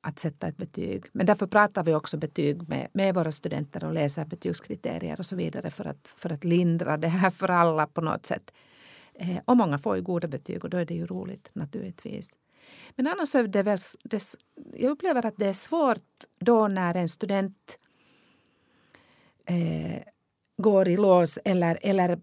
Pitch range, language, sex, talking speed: 165-210 Hz, Swedish, female, 180 wpm